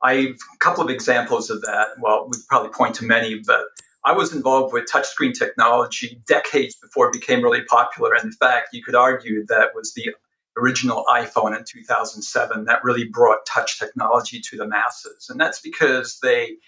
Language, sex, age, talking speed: English, male, 50-69, 185 wpm